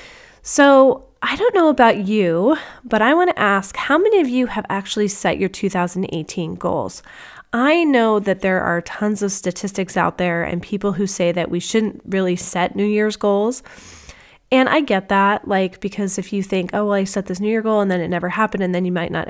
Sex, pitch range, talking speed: female, 180-225 Hz, 220 wpm